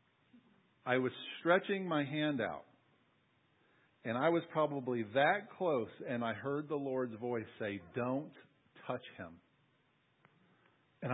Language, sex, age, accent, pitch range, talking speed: English, male, 50-69, American, 105-150 Hz, 125 wpm